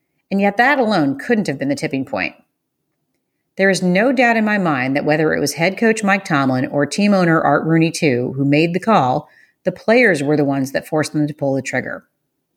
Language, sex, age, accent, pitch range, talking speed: English, female, 40-59, American, 150-200 Hz, 225 wpm